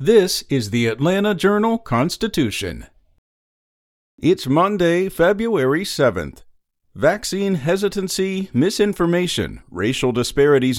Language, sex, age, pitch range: English, male, 50-69, 125-175 Hz